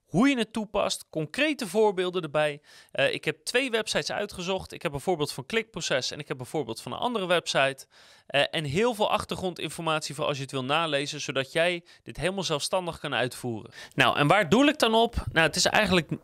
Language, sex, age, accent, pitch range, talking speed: Dutch, male, 30-49, Dutch, 145-210 Hz, 210 wpm